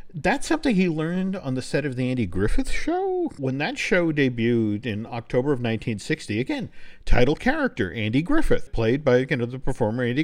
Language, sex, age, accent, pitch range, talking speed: English, male, 50-69, American, 125-190 Hz, 190 wpm